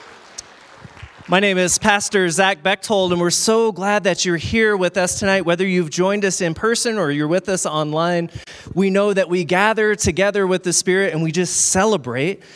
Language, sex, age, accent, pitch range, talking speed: English, male, 20-39, American, 140-190 Hz, 190 wpm